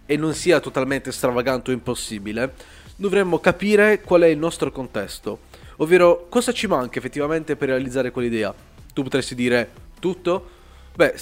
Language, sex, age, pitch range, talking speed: Italian, male, 20-39, 125-150 Hz, 145 wpm